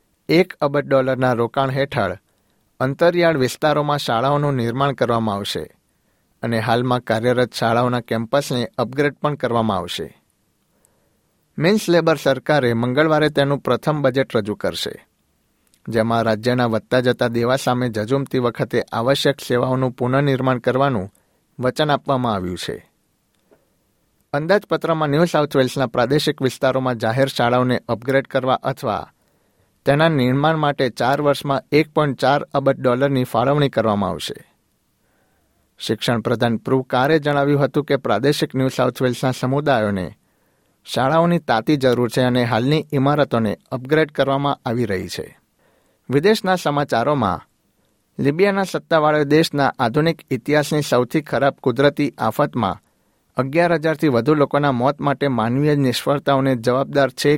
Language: Gujarati